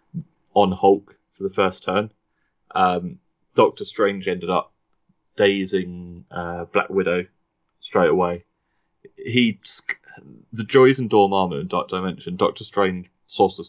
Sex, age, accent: male, 20-39, British